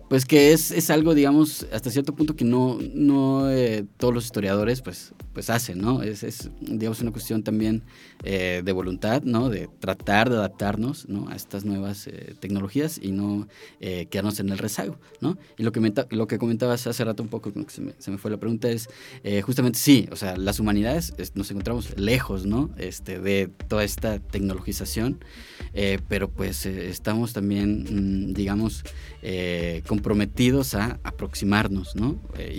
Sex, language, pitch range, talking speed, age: male, Spanish, 95-115 Hz, 185 wpm, 20-39